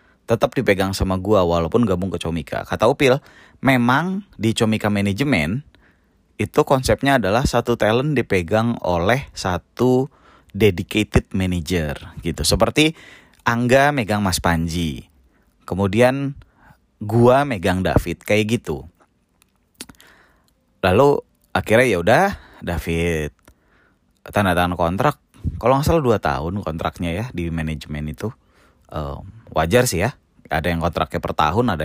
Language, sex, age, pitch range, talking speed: Indonesian, male, 20-39, 85-120 Hz, 120 wpm